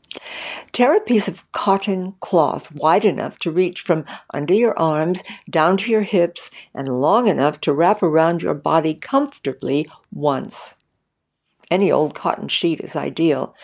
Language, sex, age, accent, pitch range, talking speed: English, female, 60-79, American, 150-195 Hz, 150 wpm